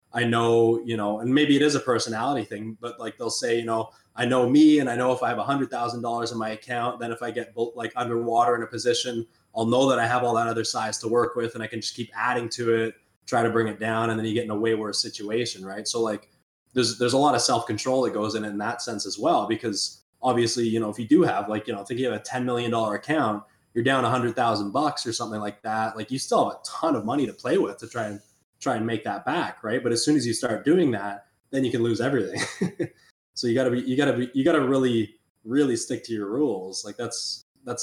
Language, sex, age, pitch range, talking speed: English, male, 20-39, 110-125 Hz, 275 wpm